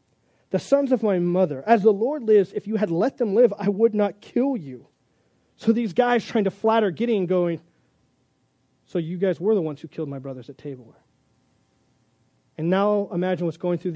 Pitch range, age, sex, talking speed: 165-210 Hz, 30-49, male, 200 wpm